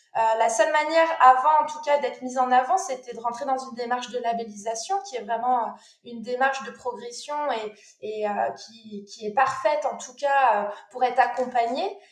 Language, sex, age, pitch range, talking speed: French, female, 20-39, 235-300 Hz, 200 wpm